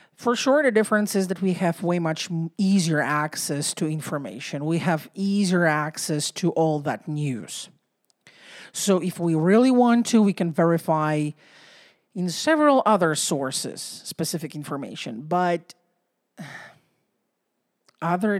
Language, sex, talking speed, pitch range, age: English, male, 125 wpm, 150-185 Hz, 50-69